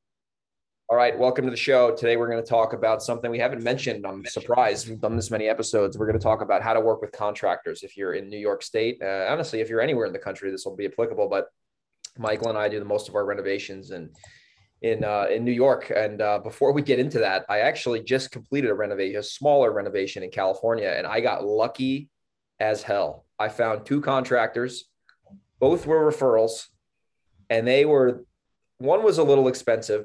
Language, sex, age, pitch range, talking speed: English, male, 20-39, 110-150 Hz, 210 wpm